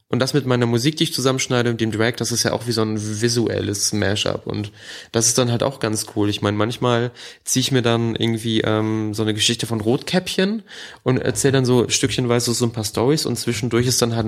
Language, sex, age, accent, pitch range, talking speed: German, male, 20-39, German, 110-125 Hz, 235 wpm